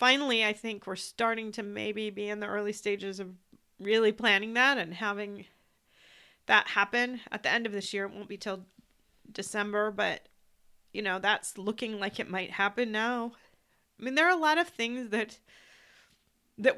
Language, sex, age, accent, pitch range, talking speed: English, female, 40-59, American, 205-245 Hz, 180 wpm